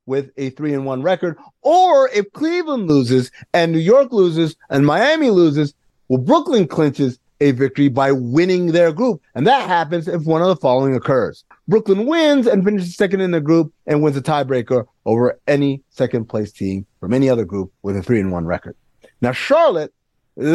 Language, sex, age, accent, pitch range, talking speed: English, male, 30-49, American, 130-190 Hz, 185 wpm